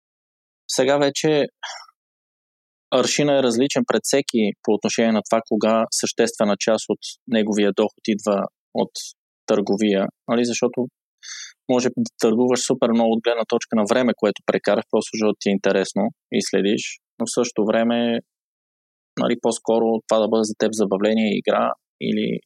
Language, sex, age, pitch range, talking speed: Bulgarian, male, 20-39, 100-120 Hz, 150 wpm